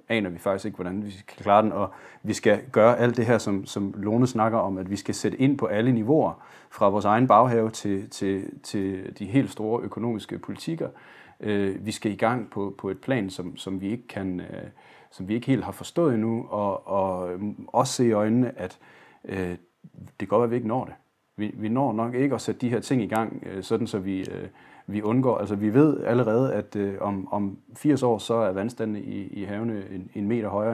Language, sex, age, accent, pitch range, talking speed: Danish, male, 30-49, native, 100-125 Hz, 210 wpm